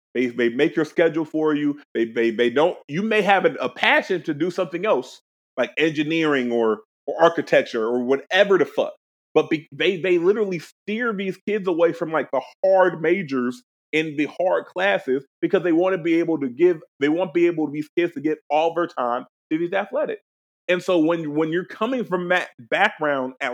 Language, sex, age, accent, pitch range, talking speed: English, male, 30-49, American, 130-170 Hz, 205 wpm